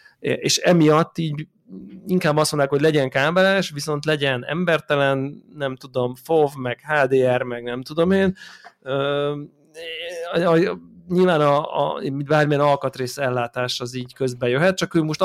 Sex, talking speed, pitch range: male, 145 wpm, 130-150 Hz